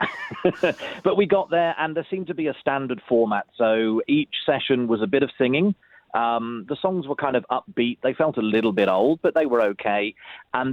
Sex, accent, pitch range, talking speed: male, British, 110-140 Hz, 215 wpm